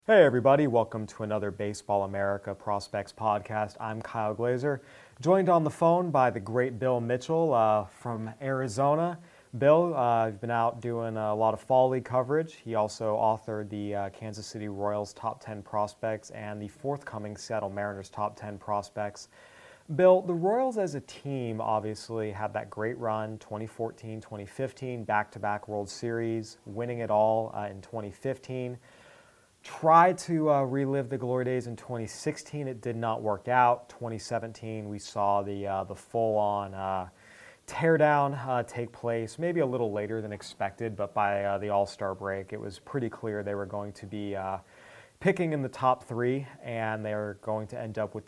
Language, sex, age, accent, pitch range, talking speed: English, male, 30-49, American, 105-130 Hz, 175 wpm